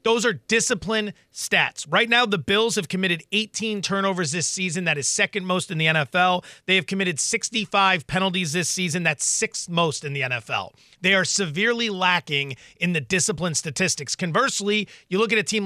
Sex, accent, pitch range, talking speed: male, American, 180-230 Hz, 185 wpm